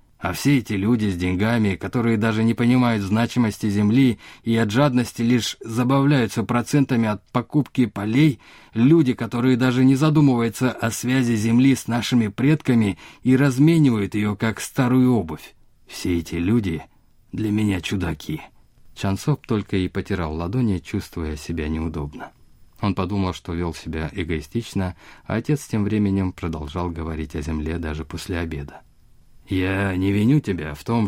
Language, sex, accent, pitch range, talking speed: Russian, male, native, 90-115 Hz, 145 wpm